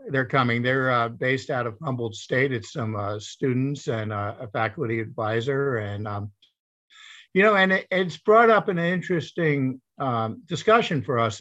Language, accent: English, American